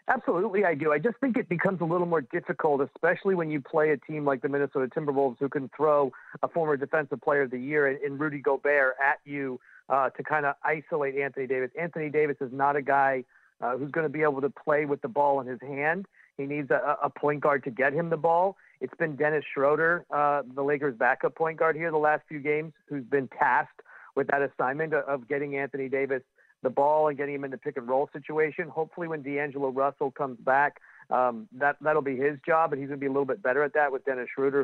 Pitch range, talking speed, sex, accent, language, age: 135-150 Hz, 235 wpm, male, American, English, 40-59